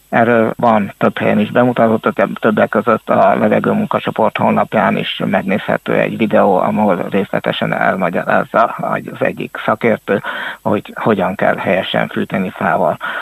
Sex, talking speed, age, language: male, 125 wpm, 60-79, Hungarian